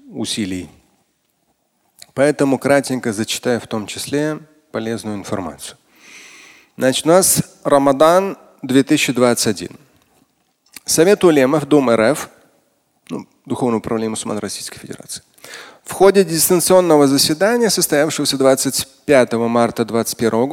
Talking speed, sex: 90 wpm, male